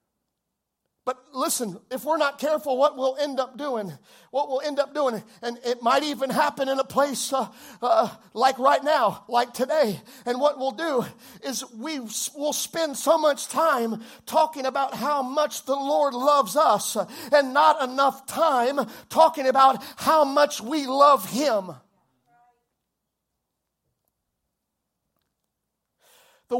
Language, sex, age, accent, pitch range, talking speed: English, male, 50-69, American, 255-310 Hz, 140 wpm